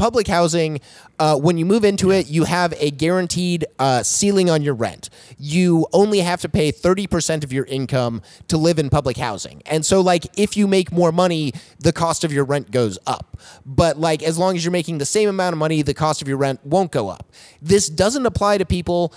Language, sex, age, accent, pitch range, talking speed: English, male, 30-49, American, 150-185 Hz, 225 wpm